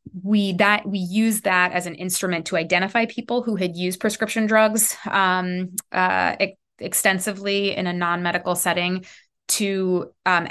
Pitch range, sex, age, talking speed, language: 170-200 Hz, female, 20-39, 150 wpm, English